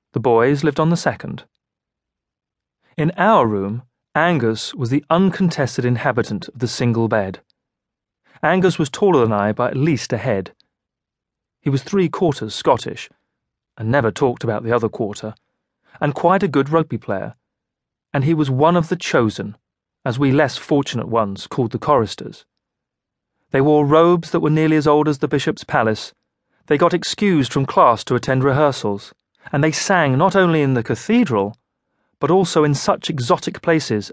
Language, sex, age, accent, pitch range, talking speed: English, male, 30-49, British, 115-160 Hz, 165 wpm